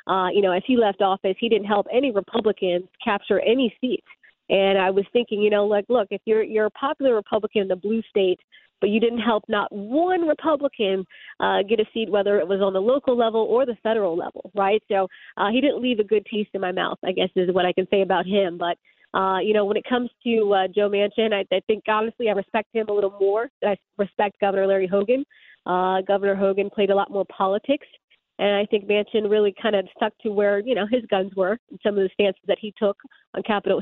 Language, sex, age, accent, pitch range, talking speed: English, female, 30-49, American, 200-230 Hz, 240 wpm